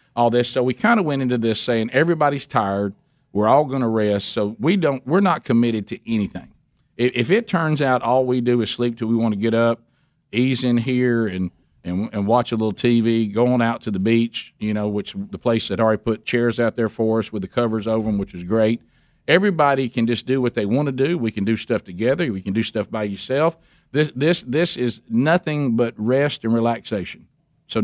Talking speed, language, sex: 230 wpm, English, male